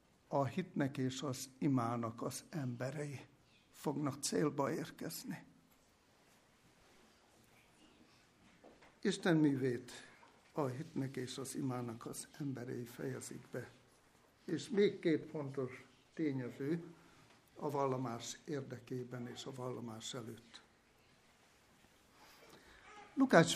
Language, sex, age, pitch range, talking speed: Hungarian, male, 60-79, 130-175 Hz, 85 wpm